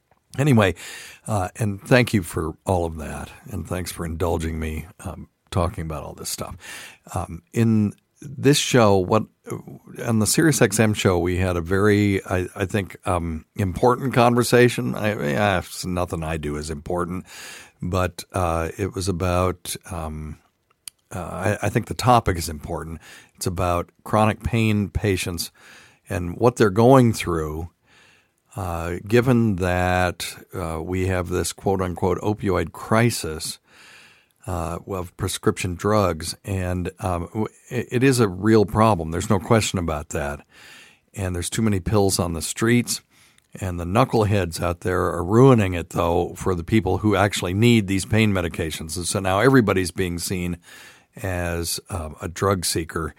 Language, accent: English, American